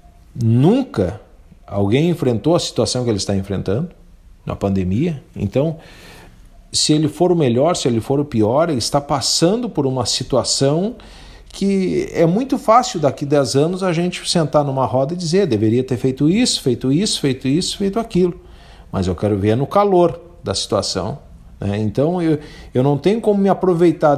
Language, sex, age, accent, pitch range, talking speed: Portuguese, male, 50-69, Brazilian, 110-165 Hz, 175 wpm